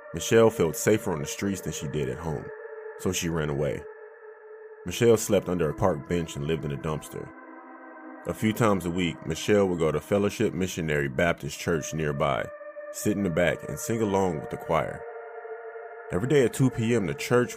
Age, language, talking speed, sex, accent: 30-49, English, 195 wpm, male, American